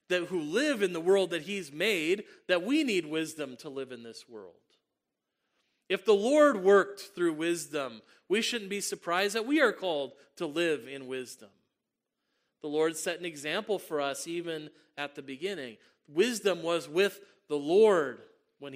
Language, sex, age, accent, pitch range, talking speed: English, male, 40-59, American, 135-190 Hz, 170 wpm